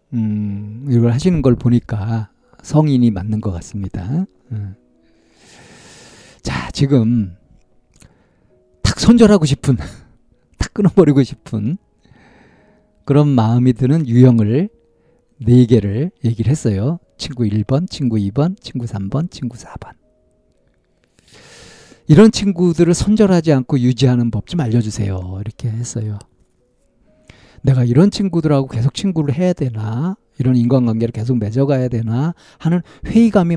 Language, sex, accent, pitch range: Korean, male, native, 110-150 Hz